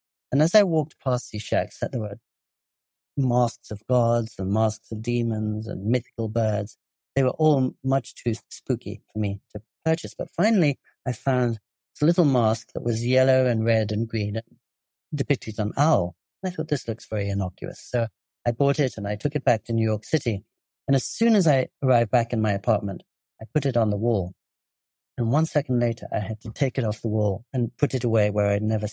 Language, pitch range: English, 105-135 Hz